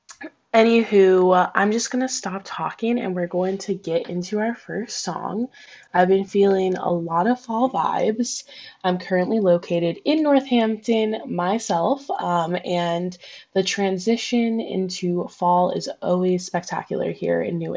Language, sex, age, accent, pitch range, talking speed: English, female, 10-29, American, 175-215 Hz, 140 wpm